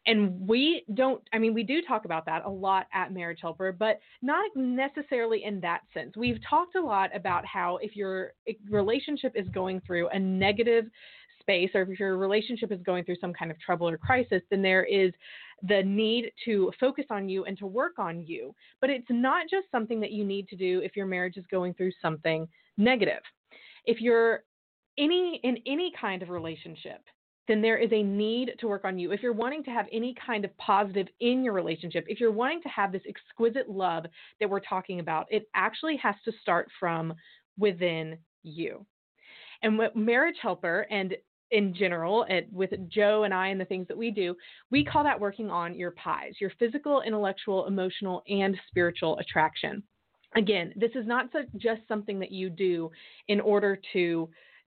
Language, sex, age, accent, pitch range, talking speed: English, female, 30-49, American, 185-230 Hz, 190 wpm